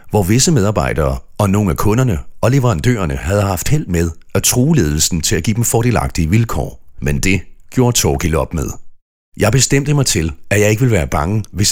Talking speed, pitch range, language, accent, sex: 200 wpm, 80-110 Hz, Danish, native, male